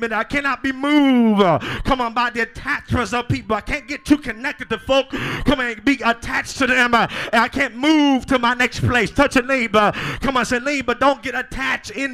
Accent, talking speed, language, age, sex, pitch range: American, 220 wpm, English, 30-49, male, 235-275 Hz